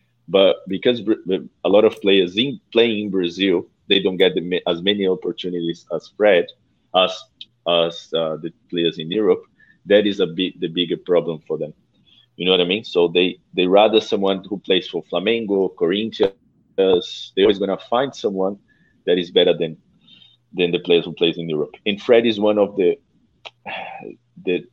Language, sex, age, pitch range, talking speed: English, male, 30-49, 90-110 Hz, 180 wpm